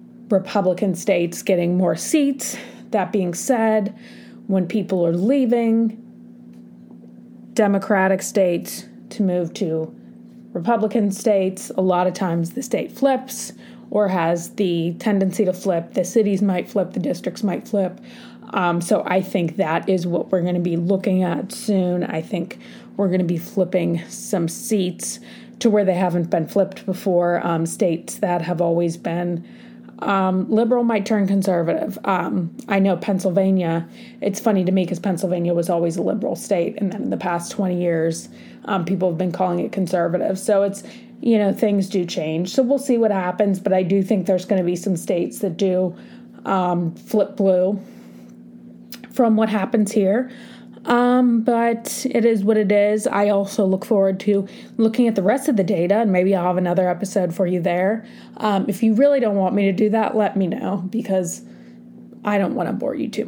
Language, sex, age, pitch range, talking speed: English, female, 30-49, 170-215 Hz, 180 wpm